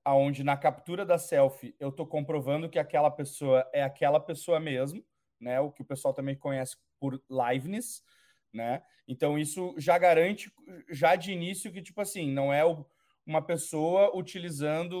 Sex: male